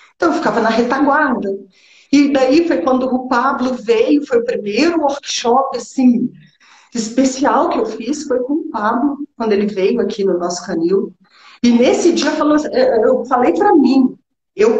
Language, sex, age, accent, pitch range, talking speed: Portuguese, female, 40-59, Brazilian, 215-295 Hz, 160 wpm